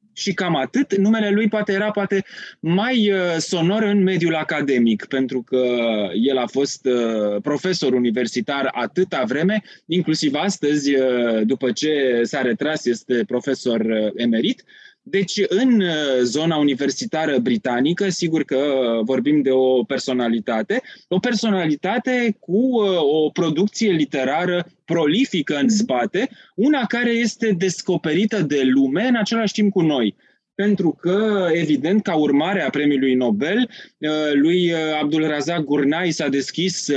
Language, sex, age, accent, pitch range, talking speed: Romanian, male, 20-39, native, 140-205 Hz, 120 wpm